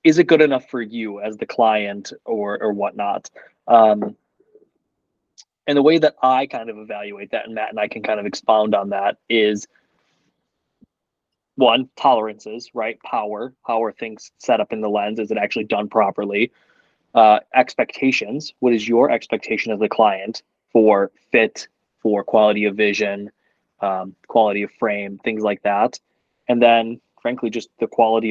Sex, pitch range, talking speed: male, 110-150 Hz, 165 wpm